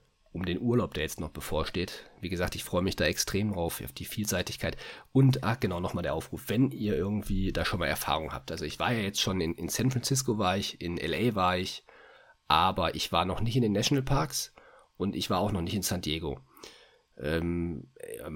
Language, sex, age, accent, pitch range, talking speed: German, male, 40-59, German, 85-105 Hz, 215 wpm